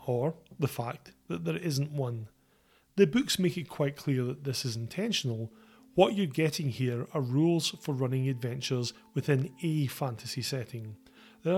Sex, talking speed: male, 160 wpm